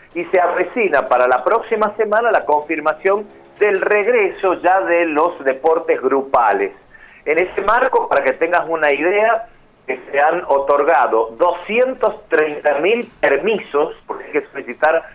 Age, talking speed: 50-69, 140 wpm